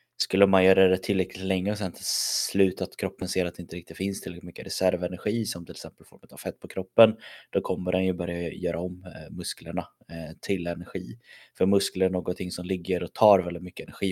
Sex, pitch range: male, 85-100 Hz